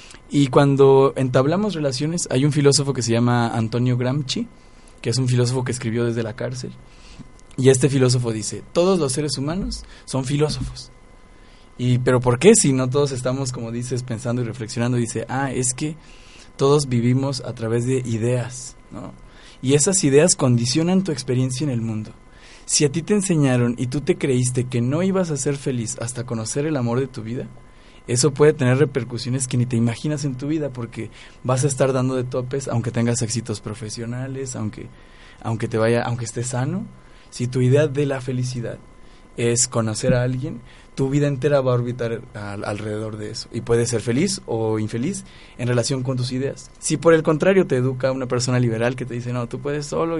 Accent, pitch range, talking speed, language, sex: Mexican, 120-140 Hz, 195 wpm, Spanish, male